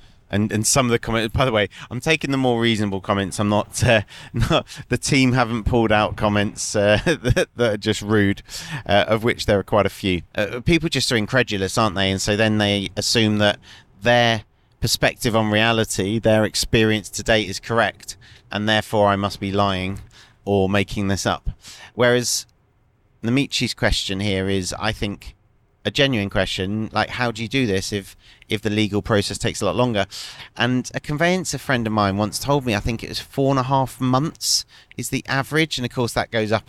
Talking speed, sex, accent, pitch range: 205 wpm, male, British, 100-120 Hz